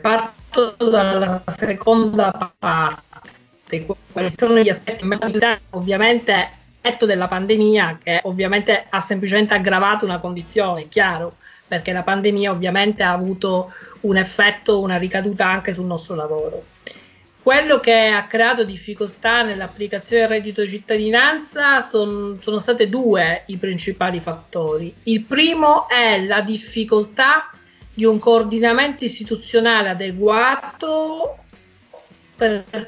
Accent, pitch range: native, 195-255 Hz